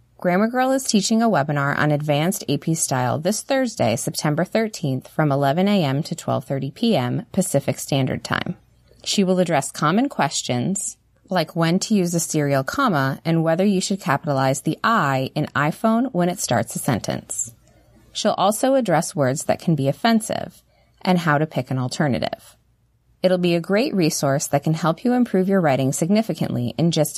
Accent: American